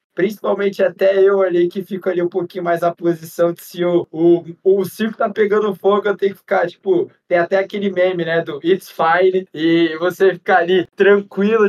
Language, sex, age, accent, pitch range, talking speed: Portuguese, male, 20-39, Brazilian, 170-195 Hz, 200 wpm